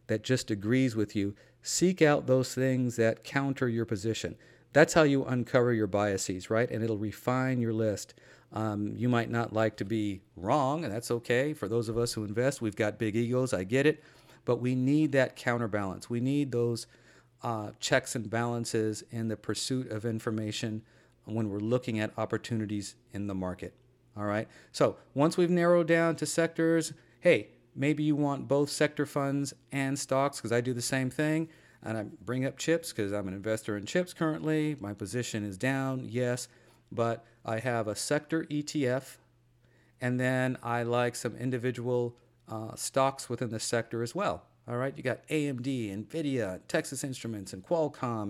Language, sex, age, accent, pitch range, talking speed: English, male, 50-69, American, 110-140 Hz, 180 wpm